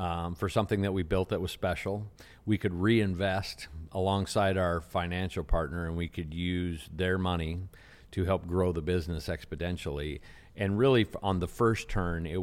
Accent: American